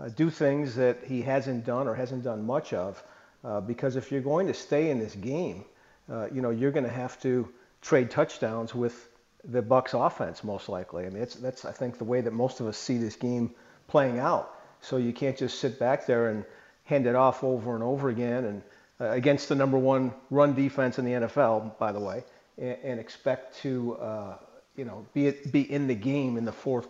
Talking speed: 225 wpm